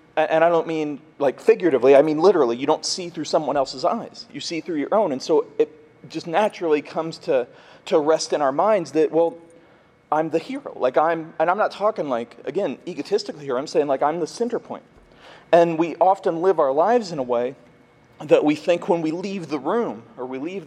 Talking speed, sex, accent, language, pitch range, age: 220 wpm, male, American, English, 155-210 Hz, 40-59